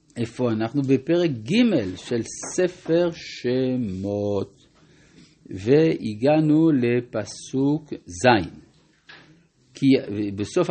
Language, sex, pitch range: Hebrew, male, 110-155 Hz